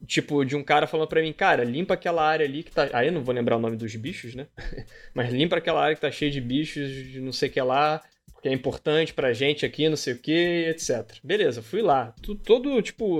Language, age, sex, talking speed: Portuguese, 20-39, male, 260 wpm